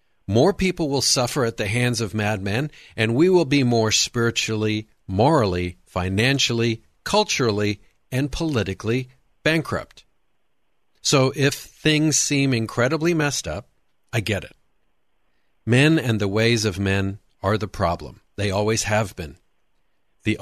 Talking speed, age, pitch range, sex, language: 130 wpm, 50-69, 105-135 Hz, male, English